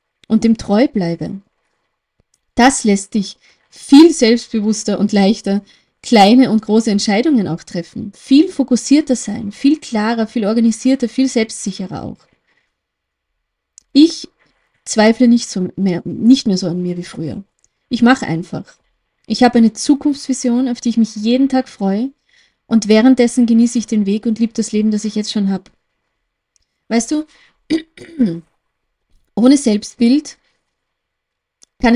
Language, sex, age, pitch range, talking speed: German, female, 20-39, 210-255 Hz, 135 wpm